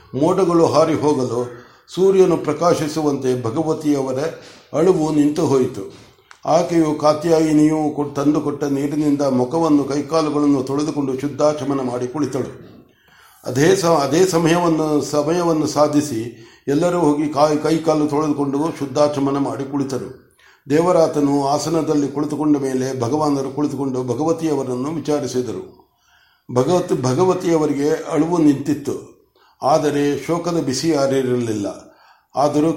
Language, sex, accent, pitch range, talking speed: Kannada, male, native, 135-160 Hz, 90 wpm